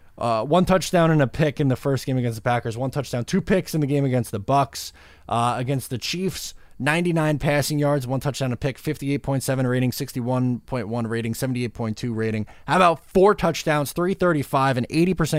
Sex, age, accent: male, 20-39, American